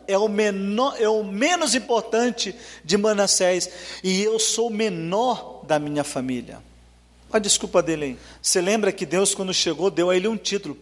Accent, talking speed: Brazilian, 185 wpm